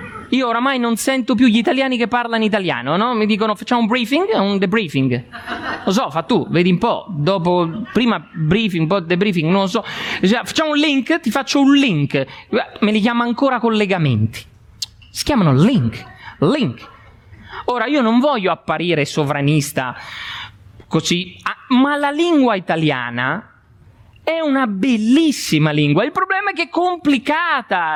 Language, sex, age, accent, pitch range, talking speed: Italian, male, 30-49, native, 155-260 Hz, 155 wpm